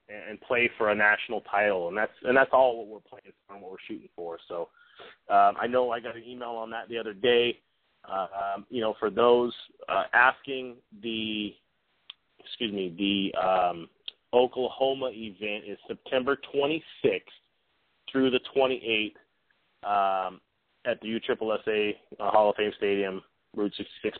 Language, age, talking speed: English, 30-49, 160 wpm